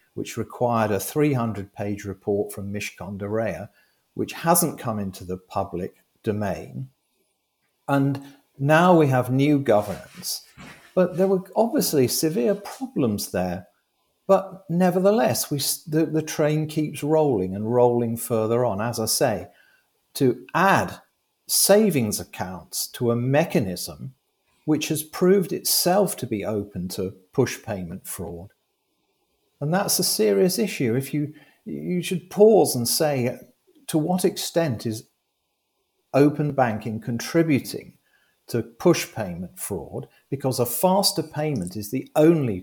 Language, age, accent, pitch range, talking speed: English, 50-69, British, 110-165 Hz, 125 wpm